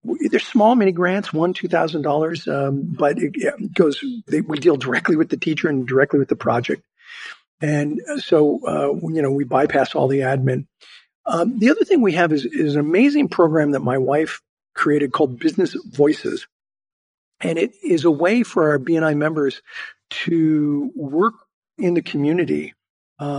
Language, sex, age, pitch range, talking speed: English, male, 50-69, 145-200 Hz, 170 wpm